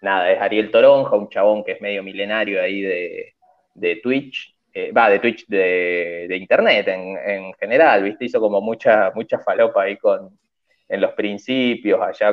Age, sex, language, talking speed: 20-39, male, Spanish, 175 wpm